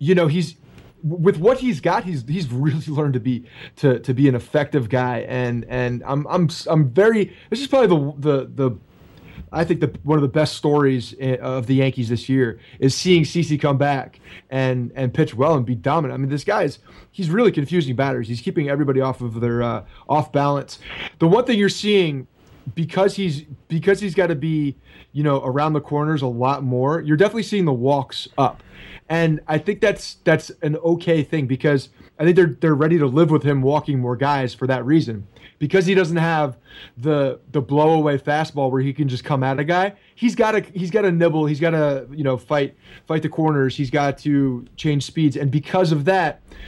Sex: male